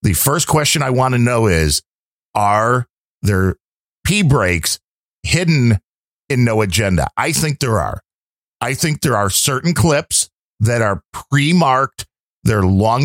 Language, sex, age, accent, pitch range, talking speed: English, male, 50-69, American, 105-150 Hz, 145 wpm